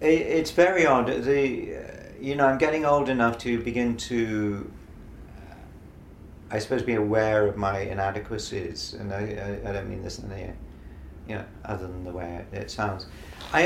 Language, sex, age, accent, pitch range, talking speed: English, male, 50-69, British, 85-110 Hz, 175 wpm